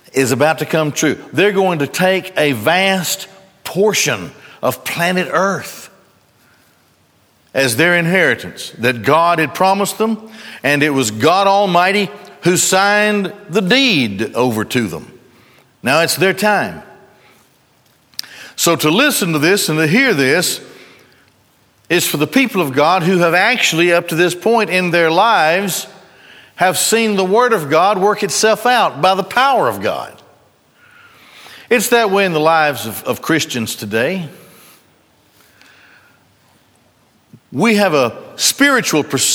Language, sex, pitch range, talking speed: English, male, 145-200 Hz, 140 wpm